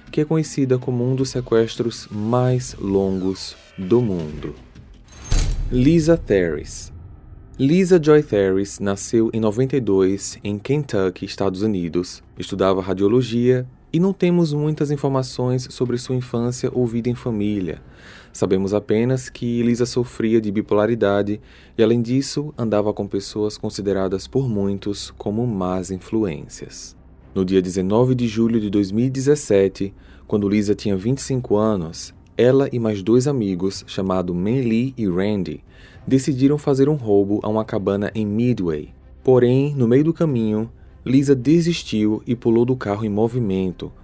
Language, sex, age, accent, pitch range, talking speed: Portuguese, male, 20-39, Brazilian, 100-125 Hz, 135 wpm